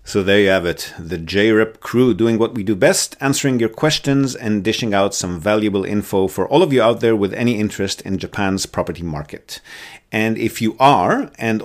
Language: English